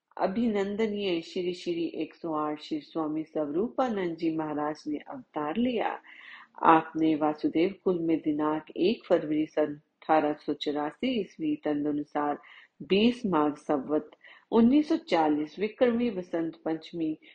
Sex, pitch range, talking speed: female, 155-225 Hz, 105 wpm